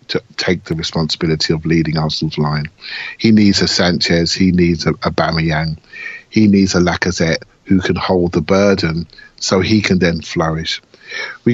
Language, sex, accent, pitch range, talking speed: English, male, British, 90-125 Hz, 165 wpm